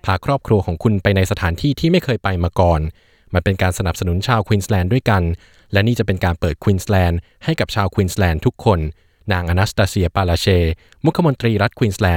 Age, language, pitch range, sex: 20-39, Thai, 90-115 Hz, male